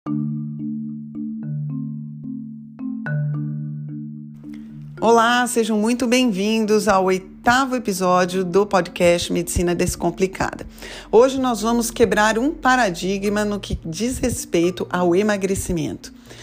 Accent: Brazilian